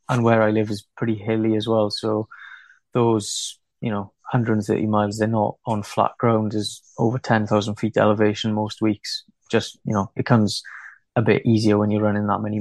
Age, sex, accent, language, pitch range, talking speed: 20-39, male, British, English, 105-115 Hz, 190 wpm